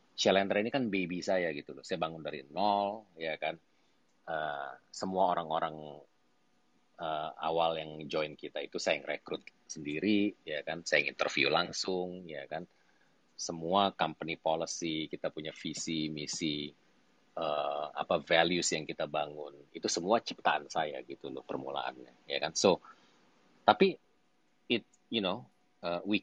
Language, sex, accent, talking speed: Indonesian, male, native, 140 wpm